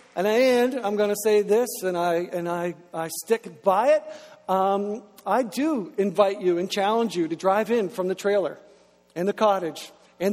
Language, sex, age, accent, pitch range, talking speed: English, male, 50-69, American, 180-210 Hz, 200 wpm